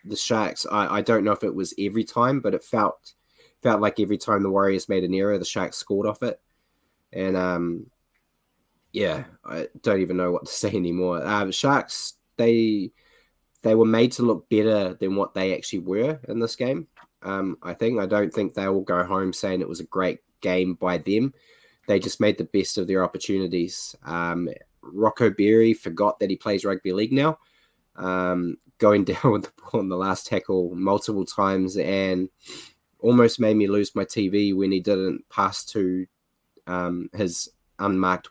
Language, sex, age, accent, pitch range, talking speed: English, male, 20-39, Australian, 95-115 Hz, 190 wpm